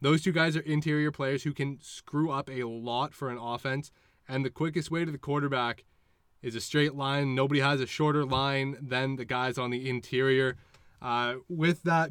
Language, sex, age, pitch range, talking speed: English, male, 20-39, 125-150 Hz, 200 wpm